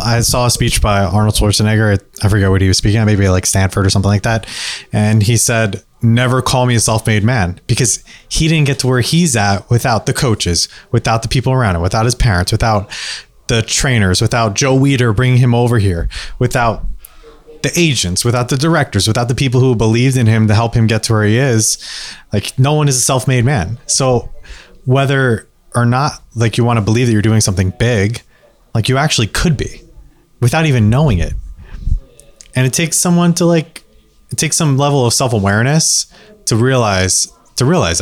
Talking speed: 200 wpm